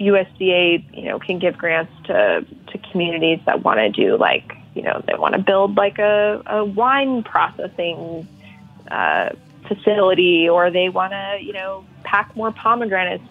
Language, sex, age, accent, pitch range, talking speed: English, female, 20-39, American, 180-210 Hz, 160 wpm